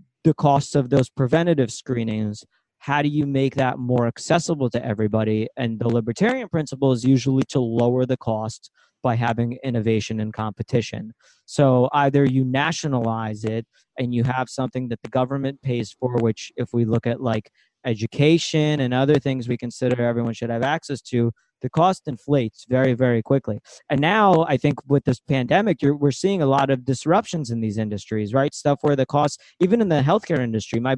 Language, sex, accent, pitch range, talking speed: English, male, American, 120-150 Hz, 185 wpm